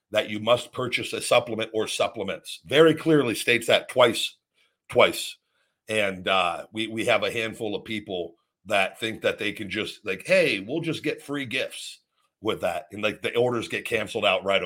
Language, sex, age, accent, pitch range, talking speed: English, male, 50-69, American, 105-125 Hz, 190 wpm